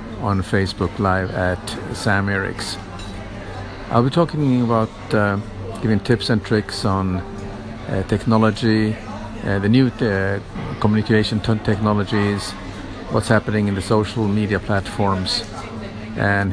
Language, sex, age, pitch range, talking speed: English, male, 50-69, 100-110 Hz, 115 wpm